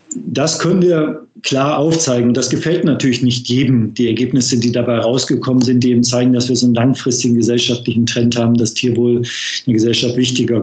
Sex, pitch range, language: male, 125-140 Hz, German